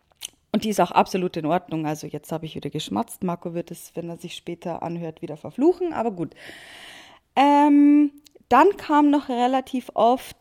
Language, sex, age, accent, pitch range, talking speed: German, female, 20-39, German, 195-265 Hz, 180 wpm